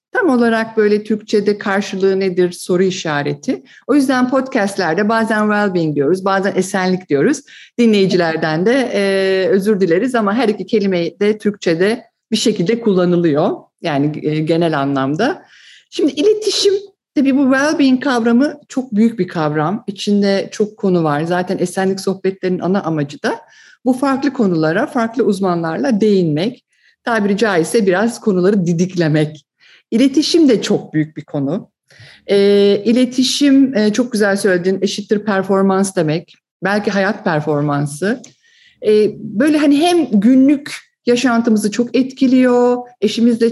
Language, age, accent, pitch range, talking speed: English, 50-69, Turkish, 185-235 Hz, 130 wpm